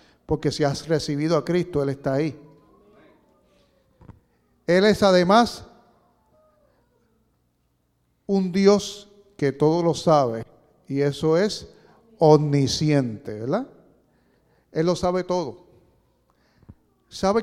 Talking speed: 95 wpm